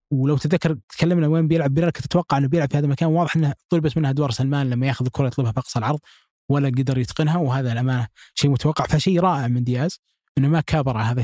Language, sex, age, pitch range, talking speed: Arabic, male, 20-39, 130-160 Hz, 225 wpm